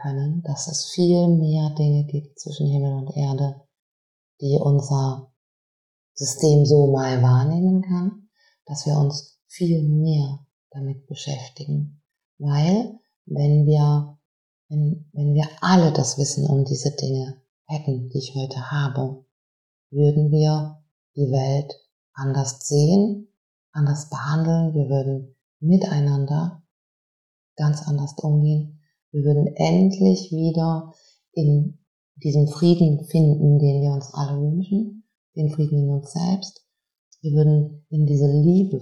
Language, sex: German, female